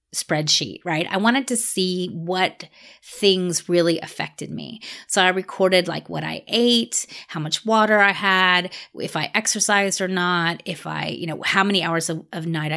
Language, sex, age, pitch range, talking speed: English, female, 30-49, 170-205 Hz, 180 wpm